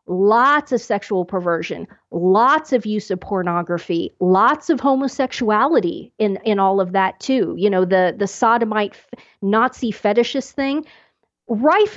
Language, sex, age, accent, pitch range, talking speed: English, female, 40-59, American, 205-260 Hz, 140 wpm